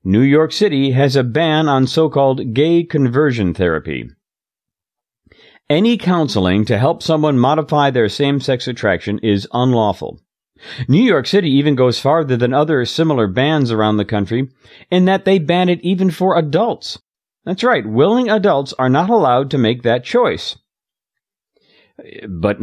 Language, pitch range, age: English, 110-165 Hz, 50-69